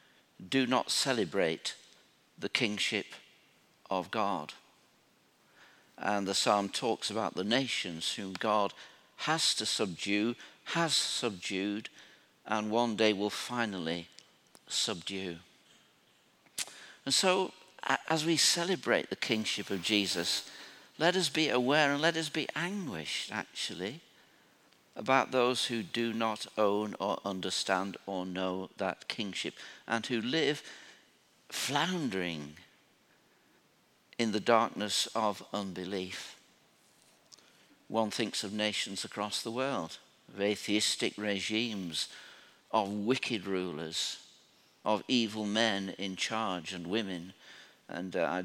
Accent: British